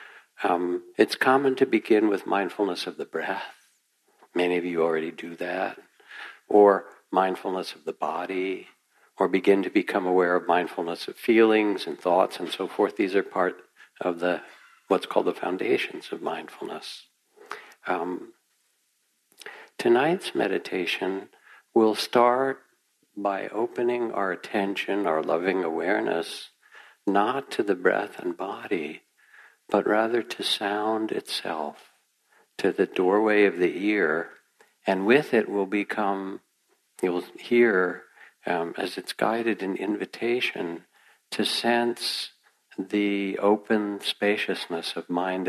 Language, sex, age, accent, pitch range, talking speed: English, male, 60-79, American, 90-120 Hz, 130 wpm